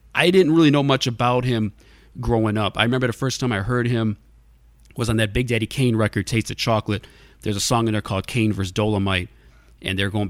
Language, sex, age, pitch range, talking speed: English, male, 30-49, 95-115 Hz, 225 wpm